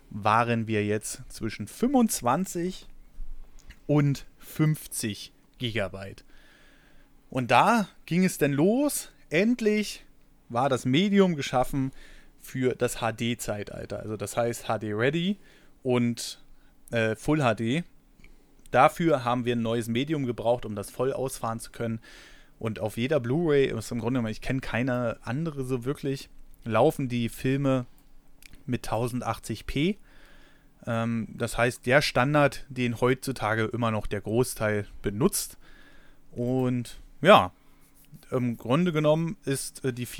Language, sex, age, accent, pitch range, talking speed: German, male, 30-49, German, 115-145 Hz, 115 wpm